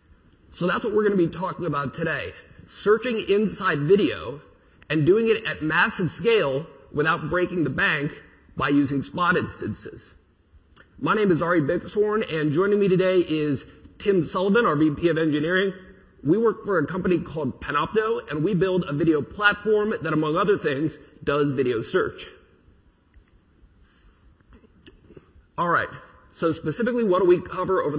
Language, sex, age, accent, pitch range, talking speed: English, male, 30-49, American, 145-195 Hz, 155 wpm